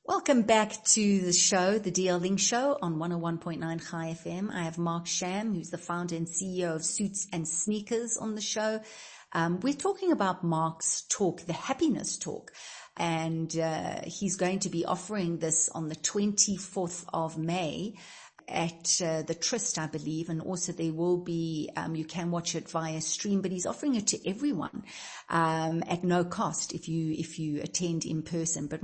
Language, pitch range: English, 165-215 Hz